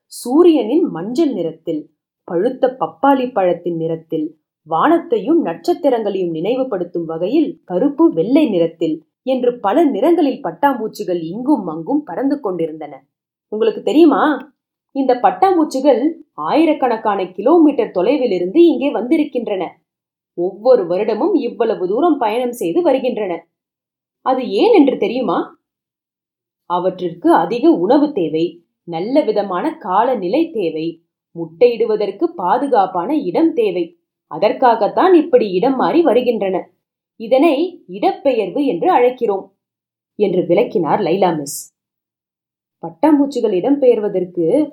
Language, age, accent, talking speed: Tamil, 30-49, native, 95 wpm